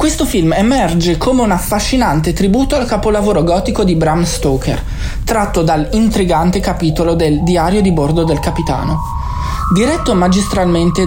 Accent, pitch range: native, 155-205 Hz